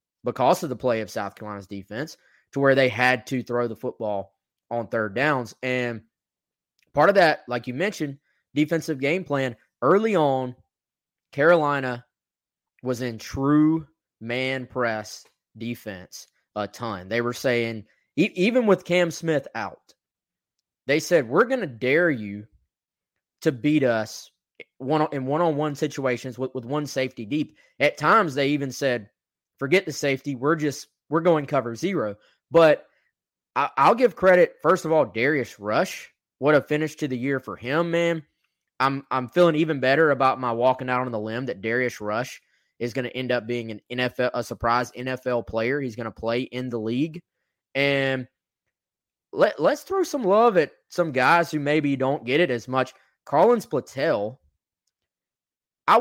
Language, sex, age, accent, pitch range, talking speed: English, male, 20-39, American, 120-150 Hz, 160 wpm